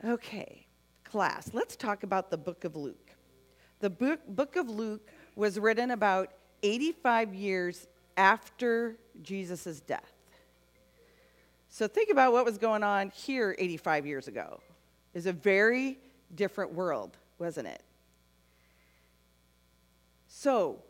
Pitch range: 165-230 Hz